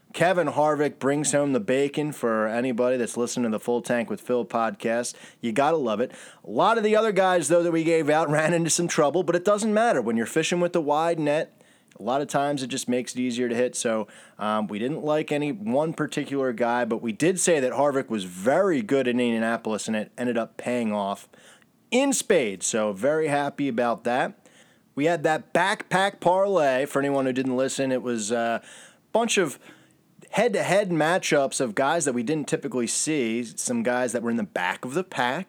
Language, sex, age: English, male, 20-39